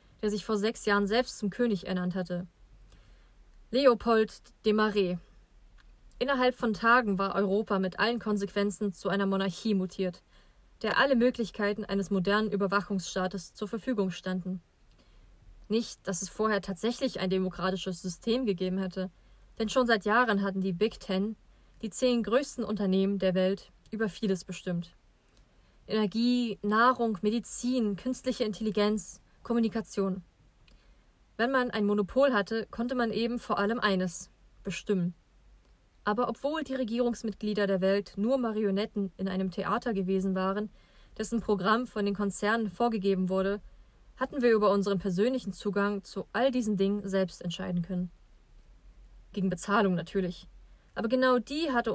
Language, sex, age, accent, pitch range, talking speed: German, female, 20-39, German, 190-230 Hz, 135 wpm